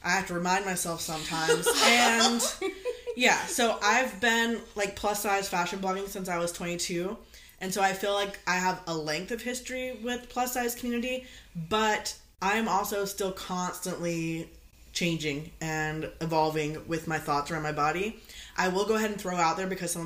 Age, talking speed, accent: 20-39, 180 wpm, American